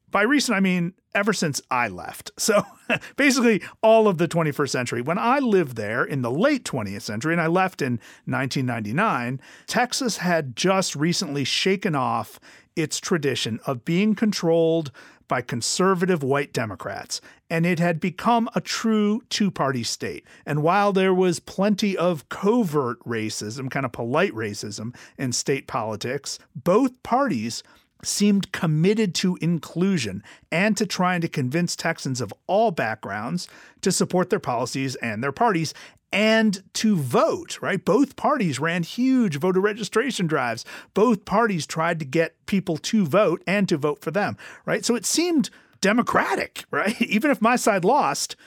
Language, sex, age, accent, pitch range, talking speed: English, male, 40-59, American, 145-210 Hz, 155 wpm